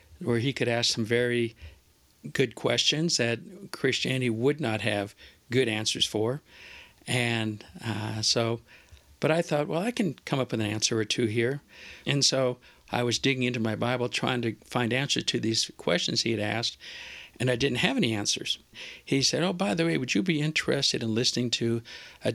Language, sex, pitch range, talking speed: English, male, 115-140 Hz, 190 wpm